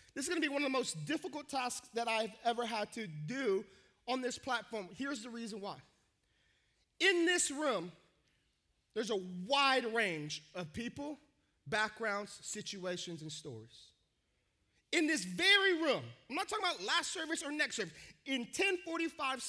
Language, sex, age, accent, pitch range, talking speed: English, male, 30-49, American, 195-300 Hz, 160 wpm